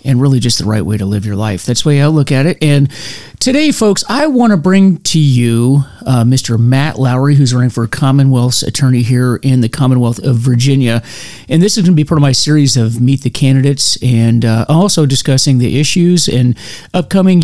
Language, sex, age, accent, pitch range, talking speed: English, male, 40-59, American, 125-150 Hz, 215 wpm